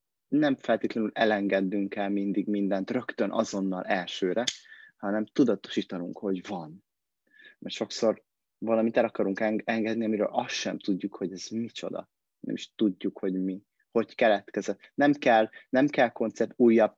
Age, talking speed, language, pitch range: 30-49, 140 wpm, Hungarian, 100-125 Hz